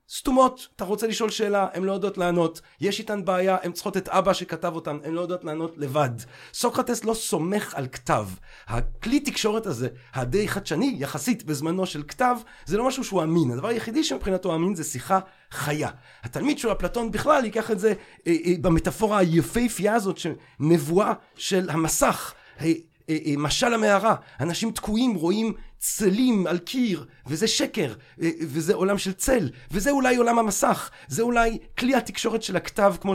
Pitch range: 170-230 Hz